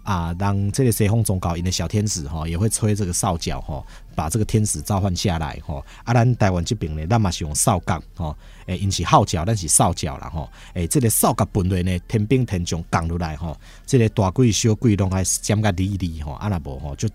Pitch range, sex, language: 85-115 Hz, male, Chinese